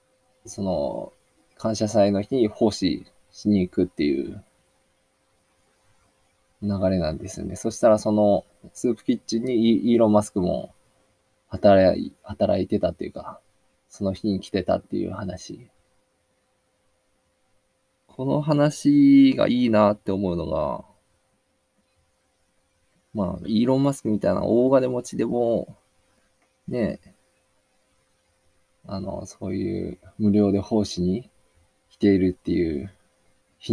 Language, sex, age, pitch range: Japanese, male, 20-39, 90-115 Hz